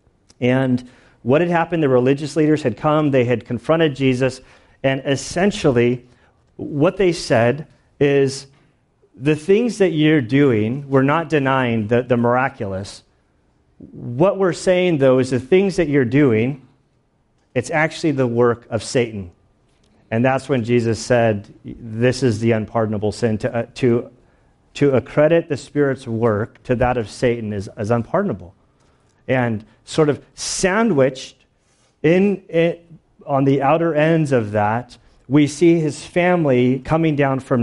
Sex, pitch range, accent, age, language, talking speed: male, 120-145 Hz, American, 40-59, English, 145 wpm